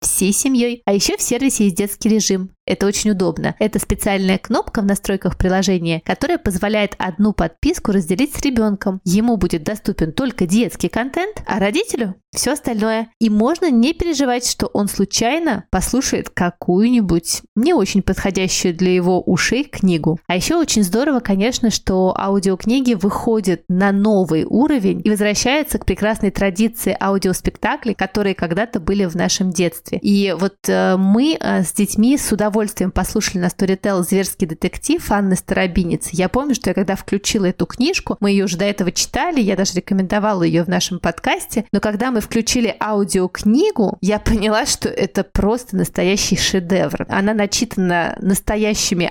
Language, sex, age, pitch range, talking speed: Russian, female, 20-39, 190-230 Hz, 150 wpm